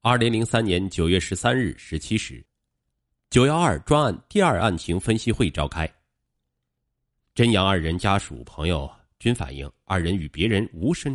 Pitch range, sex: 80-115 Hz, male